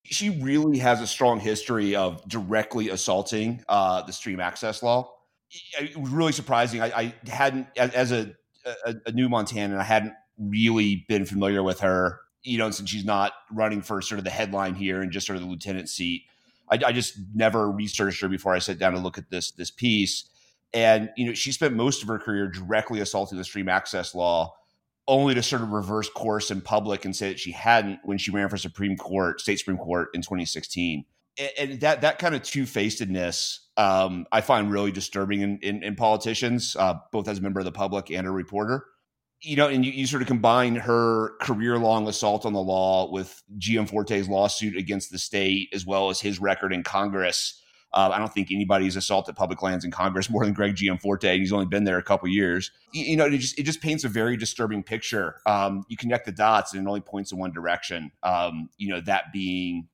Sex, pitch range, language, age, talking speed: male, 95-115 Hz, English, 30-49, 215 wpm